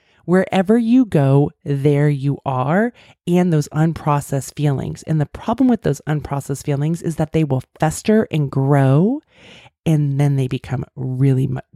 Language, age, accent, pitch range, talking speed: English, 30-49, American, 135-175 Hz, 150 wpm